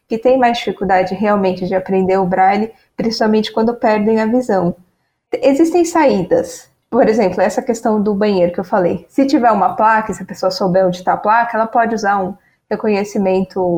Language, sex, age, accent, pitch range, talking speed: Portuguese, female, 10-29, Brazilian, 195-245 Hz, 185 wpm